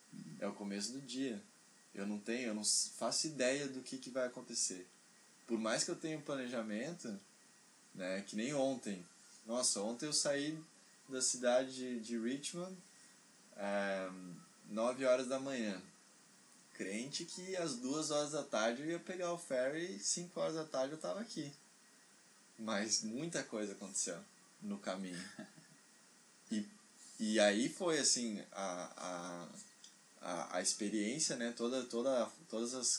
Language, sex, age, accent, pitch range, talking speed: Portuguese, male, 20-39, Brazilian, 115-165 Hz, 145 wpm